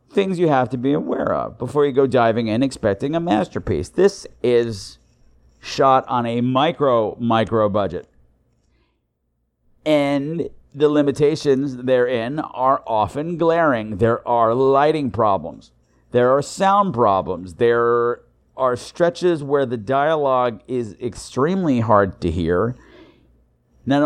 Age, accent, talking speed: 50-69, American, 125 wpm